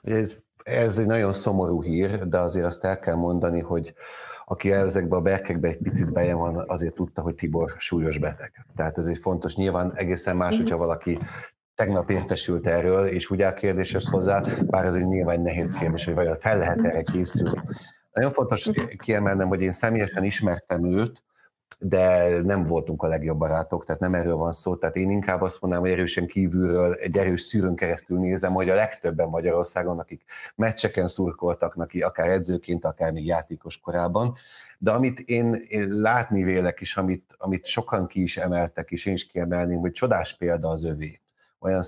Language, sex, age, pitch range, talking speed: Hungarian, male, 30-49, 85-100 Hz, 180 wpm